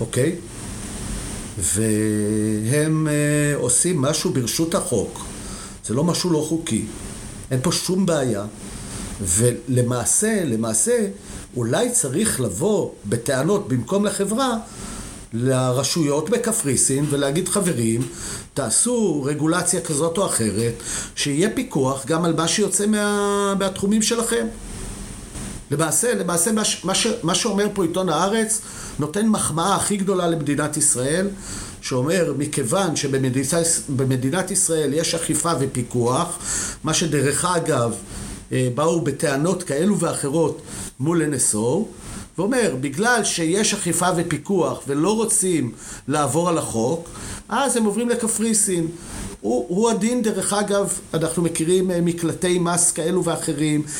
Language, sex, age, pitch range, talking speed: Hebrew, male, 50-69, 130-185 Hz, 110 wpm